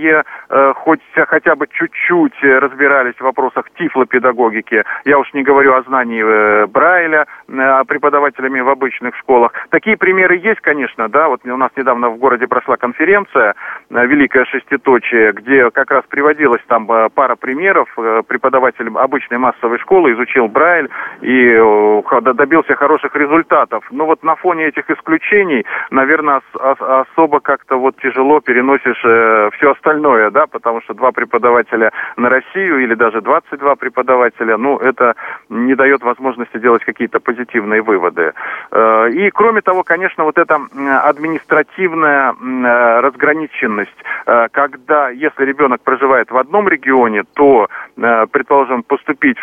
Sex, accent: male, native